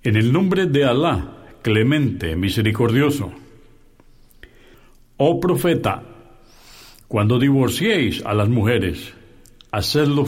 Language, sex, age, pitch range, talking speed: Spanish, male, 60-79, 105-140 Hz, 90 wpm